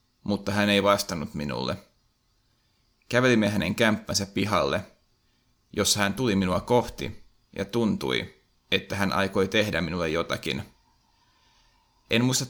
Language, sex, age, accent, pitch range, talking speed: Finnish, male, 30-49, native, 95-110 Hz, 115 wpm